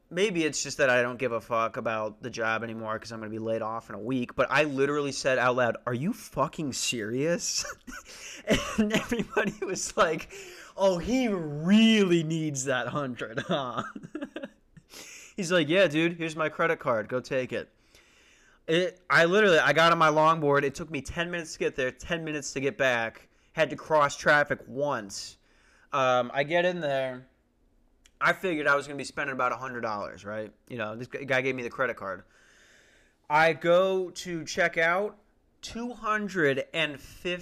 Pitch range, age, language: 130-195 Hz, 20-39, English